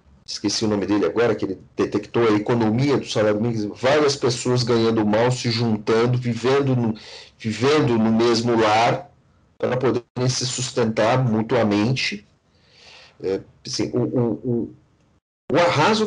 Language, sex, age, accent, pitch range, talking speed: Portuguese, male, 40-59, Brazilian, 115-150 Hz, 140 wpm